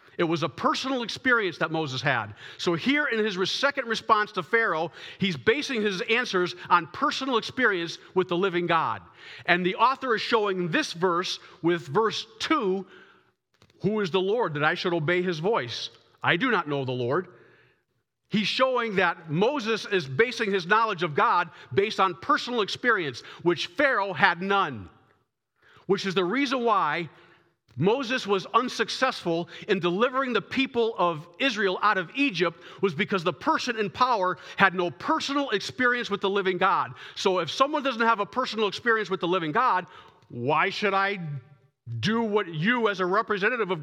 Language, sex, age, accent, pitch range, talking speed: English, male, 50-69, American, 175-225 Hz, 170 wpm